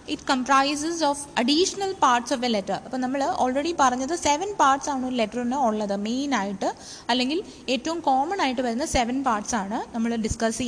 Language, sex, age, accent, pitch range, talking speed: English, female, 20-39, Indian, 225-280 Hz, 150 wpm